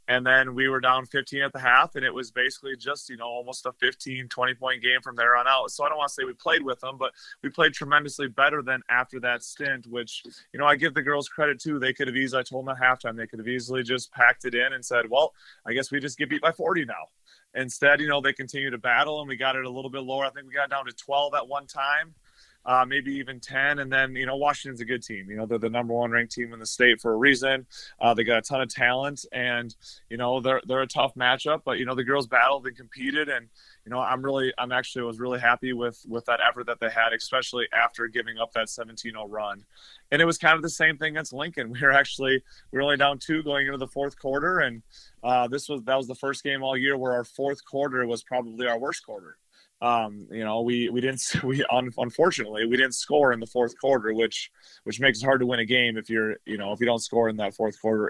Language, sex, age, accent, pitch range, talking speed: English, male, 30-49, American, 120-140 Hz, 265 wpm